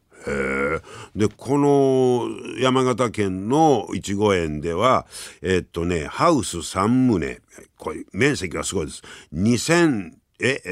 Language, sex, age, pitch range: Japanese, male, 50-69, 90-140 Hz